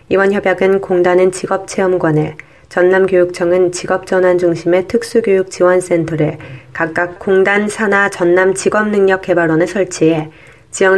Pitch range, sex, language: 165-195 Hz, female, Korean